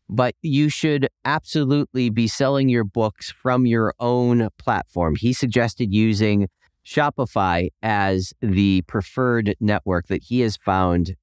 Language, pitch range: English, 95-130 Hz